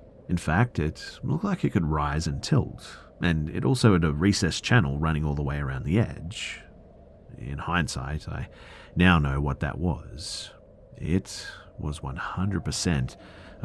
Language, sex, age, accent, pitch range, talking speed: English, male, 40-59, Australian, 75-100 Hz, 155 wpm